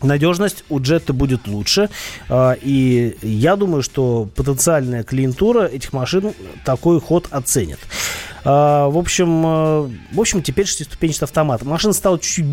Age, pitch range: 30-49, 125-165 Hz